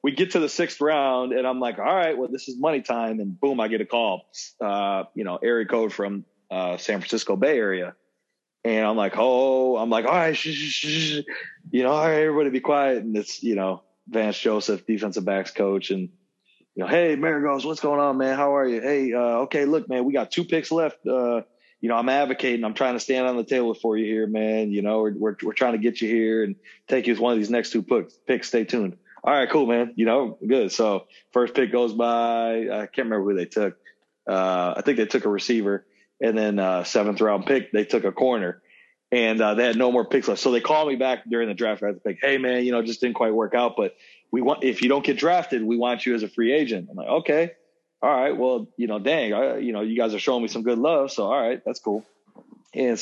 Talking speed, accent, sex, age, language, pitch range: 250 wpm, American, male, 30-49, English, 110-135 Hz